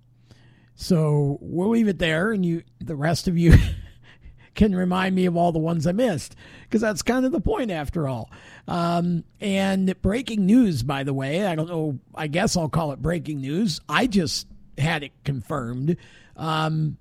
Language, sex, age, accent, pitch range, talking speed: English, male, 50-69, American, 140-185 Hz, 180 wpm